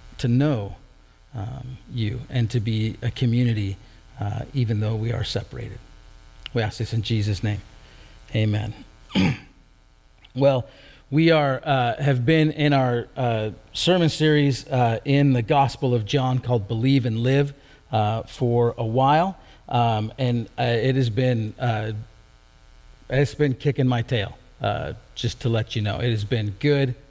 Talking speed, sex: 155 wpm, male